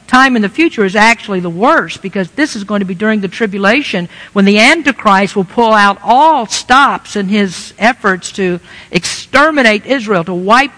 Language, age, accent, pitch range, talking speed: English, 50-69, American, 200-265 Hz, 185 wpm